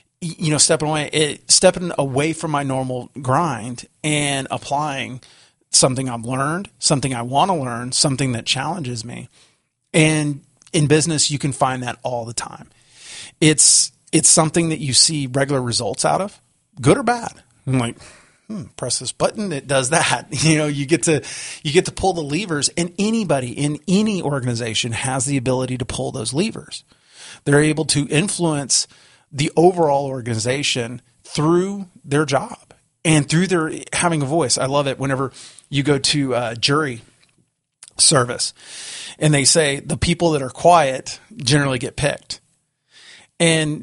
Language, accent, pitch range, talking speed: English, American, 130-160 Hz, 160 wpm